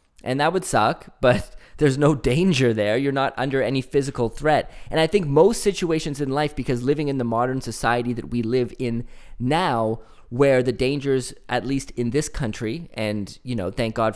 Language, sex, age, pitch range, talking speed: English, male, 20-39, 110-140 Hz, 195 wpm